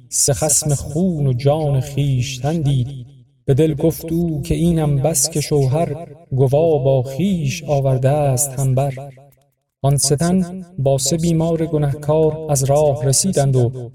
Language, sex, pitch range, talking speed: Persian, male, 130-150 Hz, 140 wpm